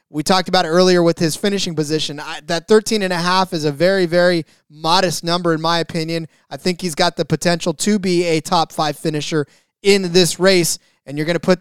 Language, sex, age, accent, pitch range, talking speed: English, male, 20-39, American, 160-185 Hz, 210 wpm